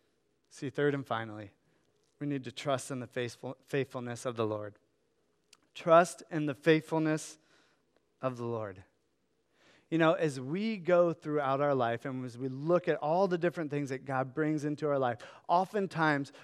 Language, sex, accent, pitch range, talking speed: English, male, American, 150-190 Hz, 165 wpm